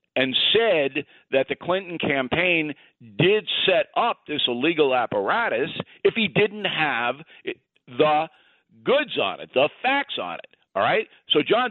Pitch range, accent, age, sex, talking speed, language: 150-215 Hz, American, 50-69, male, 145 wpm, English